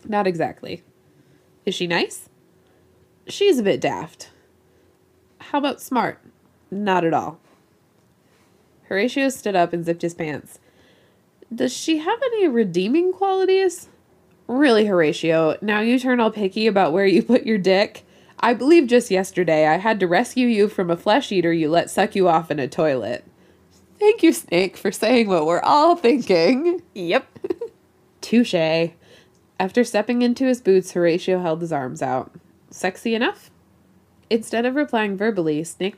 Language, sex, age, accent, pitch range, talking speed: English, female, 20-39, American, 170-245 Hz, 150 wpm